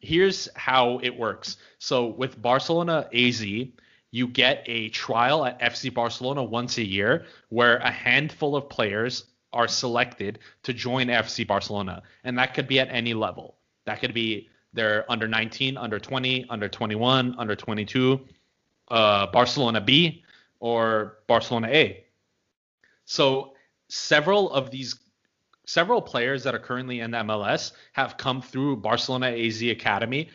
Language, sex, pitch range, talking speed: English, male, 115-130 Hz, 140 wpm